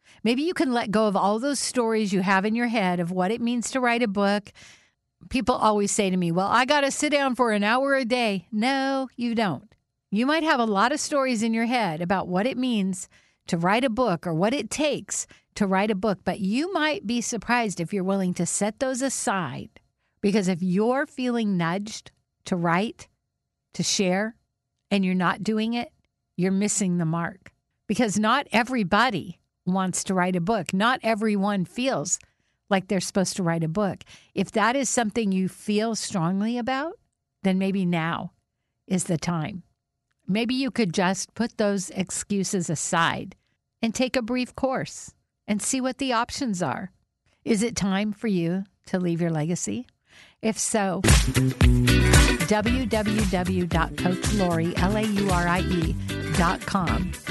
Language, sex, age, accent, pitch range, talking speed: English, female, 50-69, American, 185-235 Hz, 170 wpm